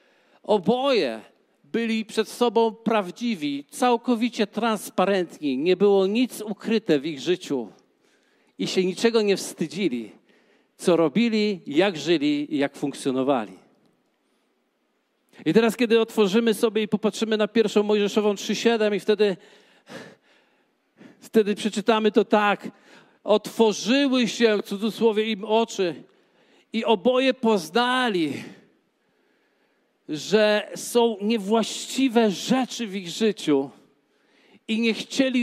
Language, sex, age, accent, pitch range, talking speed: Polish, male, 50-69, native, 195-235 Hz, 105 wpm